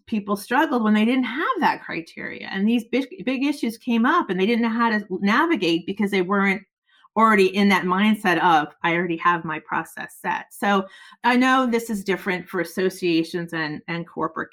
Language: English